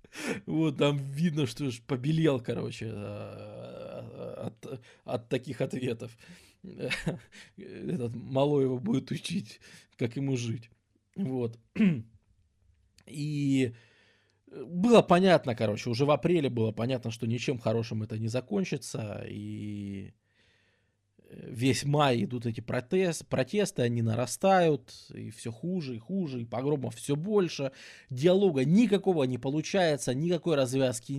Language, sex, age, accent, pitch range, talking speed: Russian, male, 20-39, native, 105-145 Hz, 115 wpm